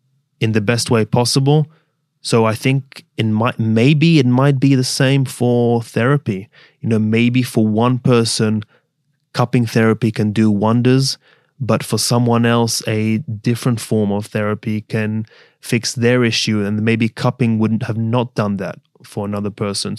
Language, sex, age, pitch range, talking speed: English, male, 20-39, 110-130 Hz, 160 wpm